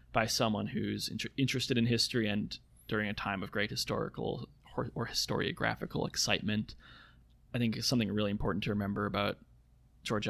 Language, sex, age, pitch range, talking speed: English, male, 20-39, 105-115 Hz, 145 wpm